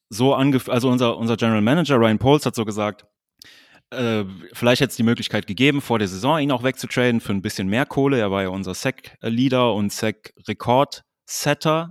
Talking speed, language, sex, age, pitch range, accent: 185 wpm, German, male, 20-39, 110-135 Hz, German